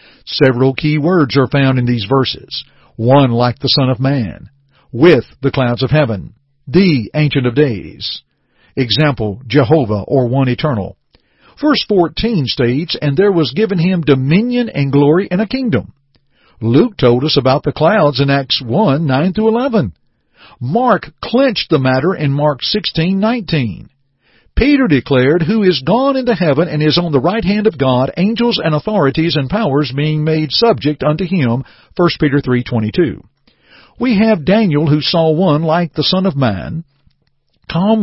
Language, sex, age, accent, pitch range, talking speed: English, male, 50-69, American, 135-175 Hz, 160 wpm